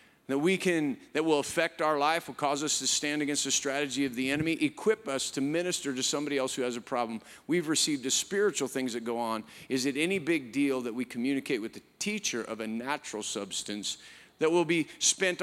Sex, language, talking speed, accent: male, English, 220 wpm, American